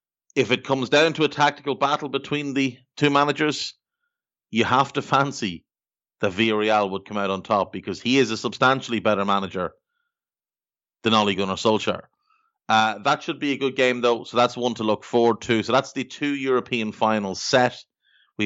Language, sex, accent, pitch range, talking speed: English, male, Irish, 110-140 Hz, 185 wpm